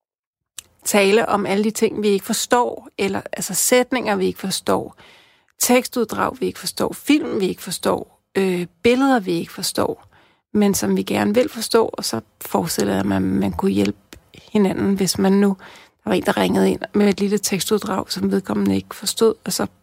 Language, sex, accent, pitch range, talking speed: Danish, female, native, 180-220 Hz, 180 wpm